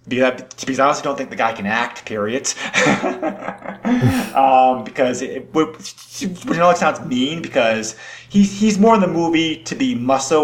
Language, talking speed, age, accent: English, 170 wpm, 30-49, American